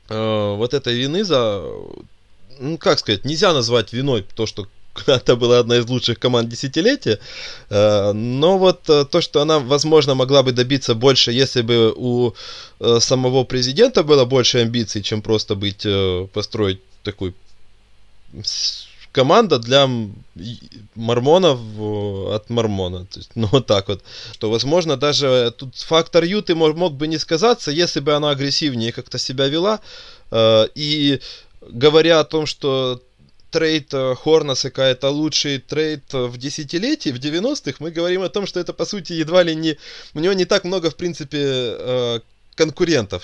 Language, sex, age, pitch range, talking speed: Russian, male, 20-39, 110-150 Hz, 145 wpm